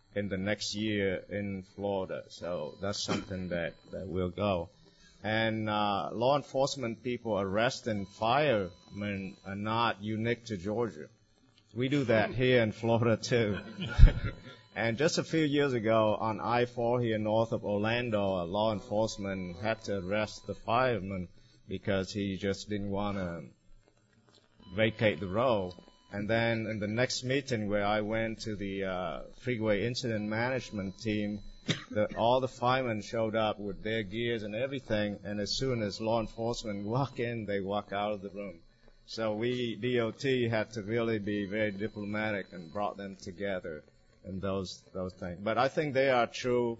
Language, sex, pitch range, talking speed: English, male, 100-115 Hz, 160 wpm